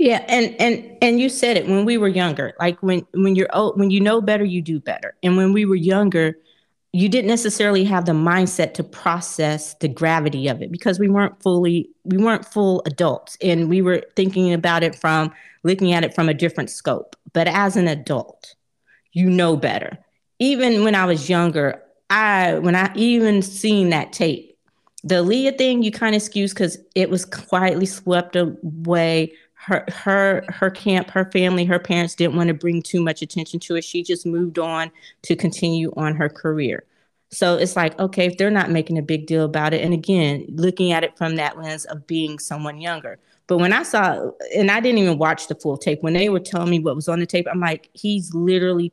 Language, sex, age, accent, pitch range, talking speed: English, female, 30-49, American, 165-195 Hz, 210 wpm